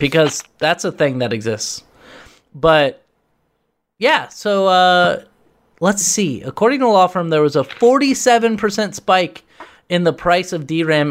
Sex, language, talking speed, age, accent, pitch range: male, English, 145 wpm, 30-49, American, 145-190 Hz